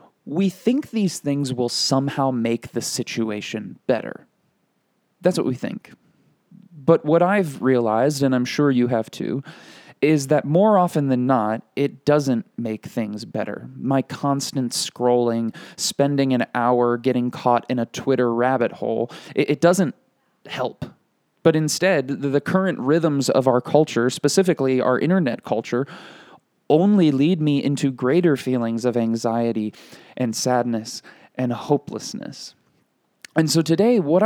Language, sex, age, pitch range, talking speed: English, male, 20-39, 125-160 Hz, 140 wpm